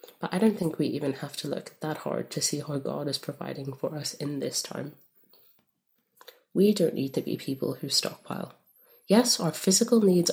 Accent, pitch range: British, 150-195 Hz